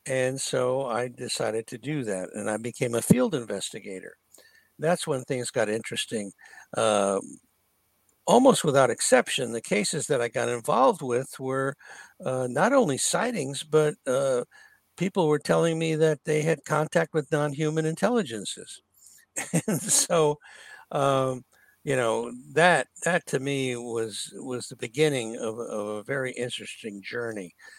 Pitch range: 115-150 Hz